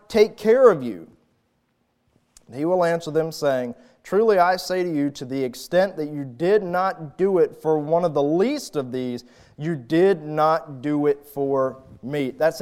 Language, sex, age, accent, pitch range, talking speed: English, male, 30-49, American, 150-200 Hz, 180 wpm